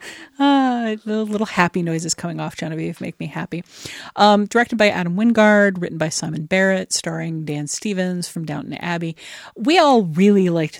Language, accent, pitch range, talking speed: English, American, 155-195 Hz, 165 wpm